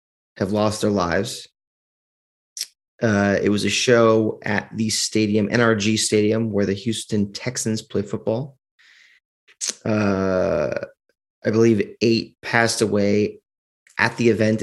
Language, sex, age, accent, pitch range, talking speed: English, male, 30-49, American, 100-115 Hz, 120 wpm